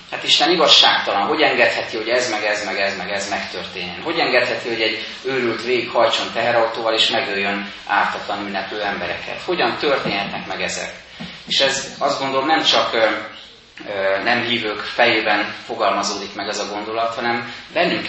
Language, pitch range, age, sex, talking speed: Hungarian, 105-130 Hz, 30-49, male, 165 wpm